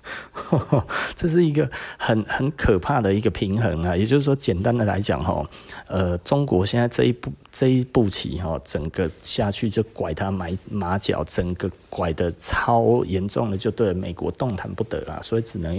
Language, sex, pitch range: Chinese, male, 90-110 Hz